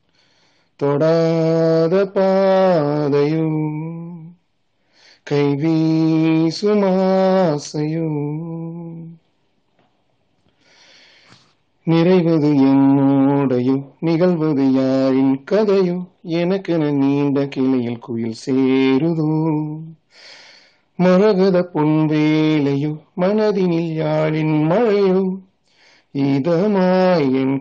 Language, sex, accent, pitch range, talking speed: Tamil, male, native, 145-190 Hz, 50 wpm